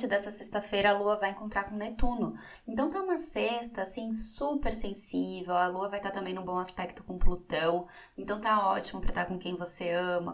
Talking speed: 195 wpm